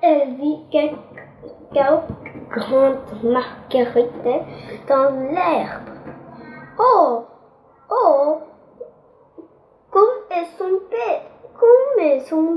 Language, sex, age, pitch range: Chinese, female, 10-29, 265-315 Hz